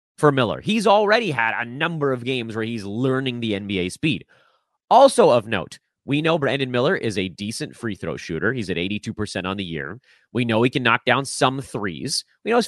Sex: male